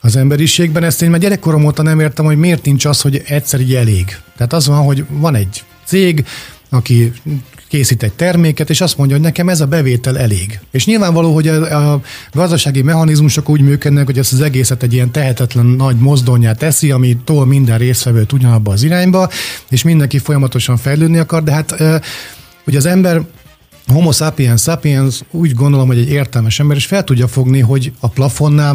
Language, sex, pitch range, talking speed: Hungarian, male, 130-155 Hz, 185 wpm